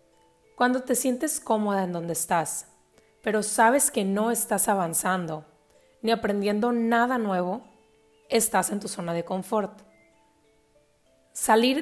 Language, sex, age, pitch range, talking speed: Spanish, female, 30-49, 180-235 Hz, 120 wpm